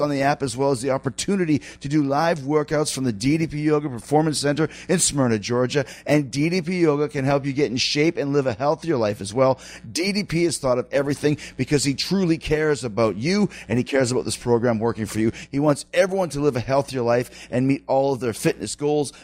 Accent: American